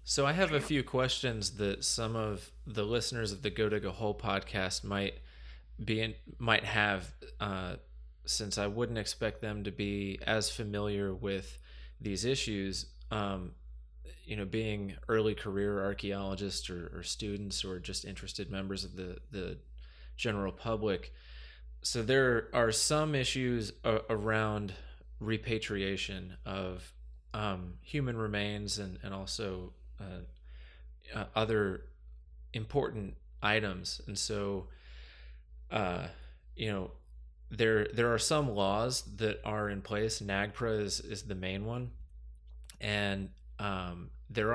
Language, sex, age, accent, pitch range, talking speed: English, male, 20-39, American, 85-110 Hz, 130 wpm